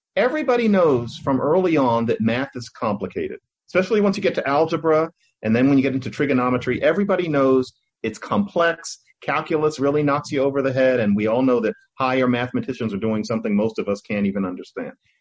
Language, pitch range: English, 125-175 Hz